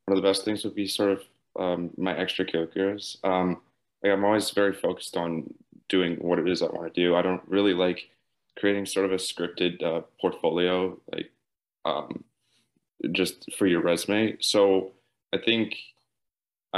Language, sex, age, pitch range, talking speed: English, male, 20-39, 85-100 Hz, 170 wpm